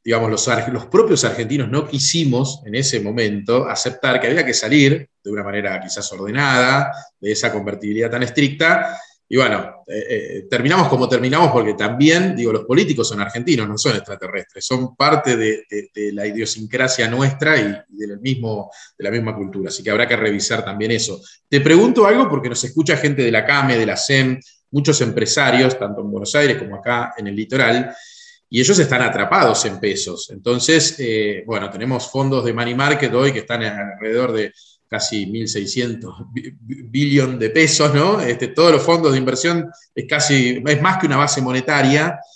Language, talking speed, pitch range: Spanish, 180 wpm, 115-150 Hz